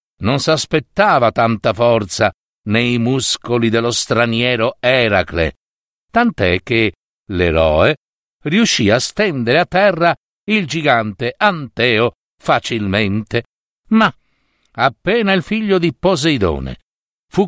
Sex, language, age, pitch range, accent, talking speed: male, Italian, 60-79, 110-175 Hz, native, 95 wpm